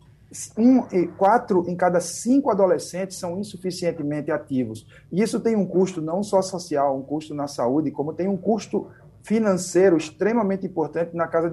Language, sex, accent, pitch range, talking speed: Portuguese, male, Brazilian, 145-185 Hz, 160 wpm